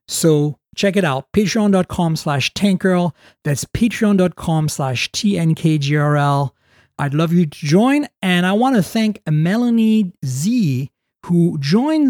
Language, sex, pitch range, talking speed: English, male, 170-225 Hz, 125 wpm